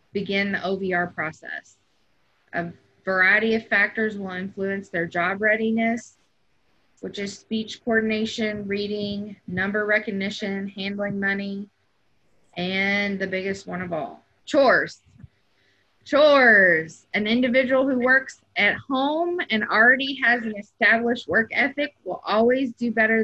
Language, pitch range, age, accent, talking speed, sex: English, 190-225 Hz, 20-39, American, 120 wpm, female